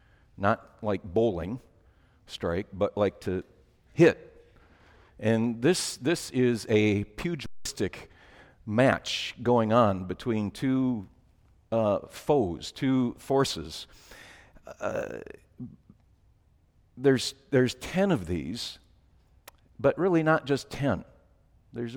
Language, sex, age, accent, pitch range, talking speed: English, male, 50-69, American, 100-125 Hz, 95 wpm